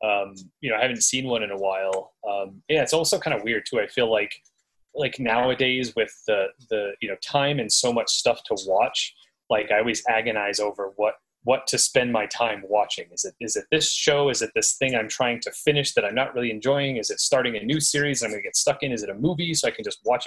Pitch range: 100-145 Hz